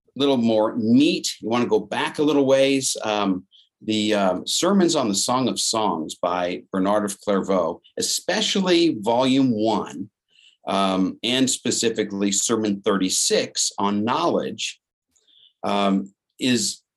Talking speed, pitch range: 130 wpm, 100-120 Hz